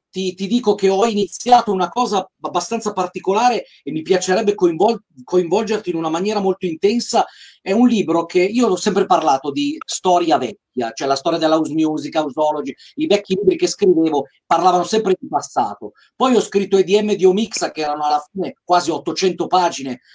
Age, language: 40-59, Italian